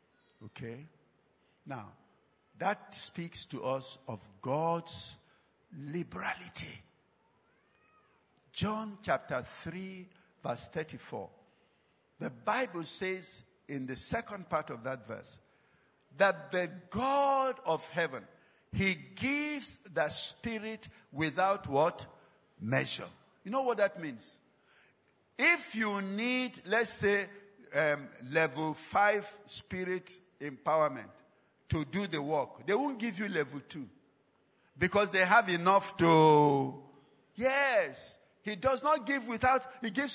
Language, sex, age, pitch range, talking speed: English, male, 60-79, 170-260 Hz, 110 wpm